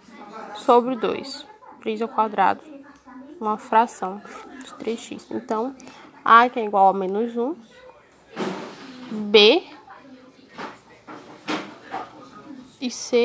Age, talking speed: 10-29, 90 wpm